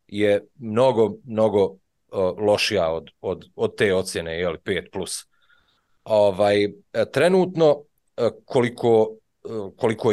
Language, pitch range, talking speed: English, 95-125 Hz, 100 wpm